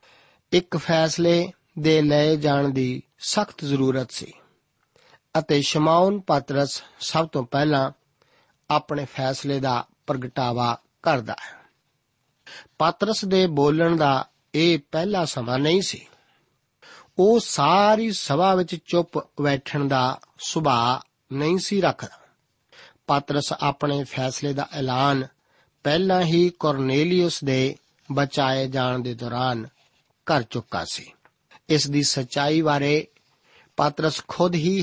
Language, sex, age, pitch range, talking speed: Punjabi, male, 50-69, 135-165 Hz, 110 wpm